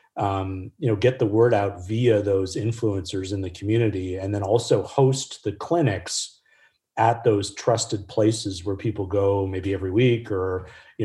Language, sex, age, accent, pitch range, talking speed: English, male, 30-49, American, 100-115 Hz, 170 wpm